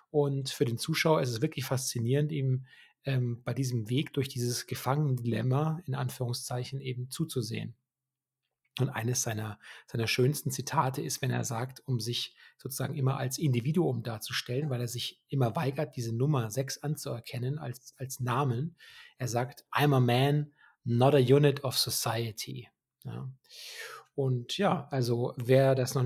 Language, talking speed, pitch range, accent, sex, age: German, 150 wpm, 125-150 Hz, German, male, 40-59